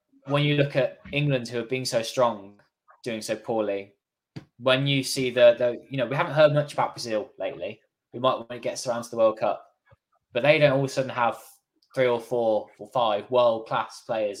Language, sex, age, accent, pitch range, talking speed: English, male, 10-29, British, 110-145 Hz, 220 wpm